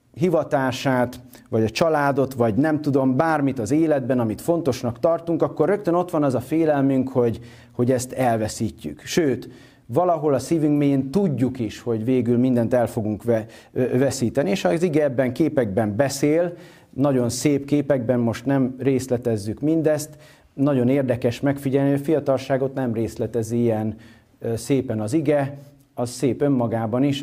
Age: 40-59